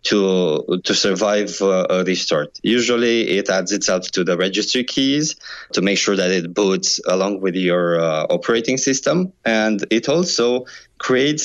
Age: 20-39